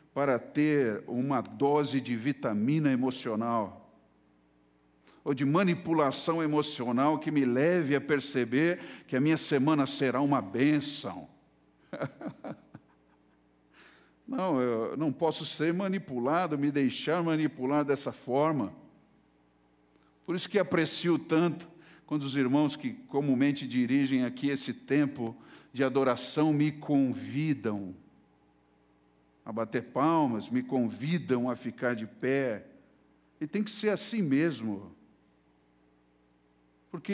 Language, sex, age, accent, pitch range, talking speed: Portuguese, male, 60-79, Brazilian, 110-160 Hz, 110 wpm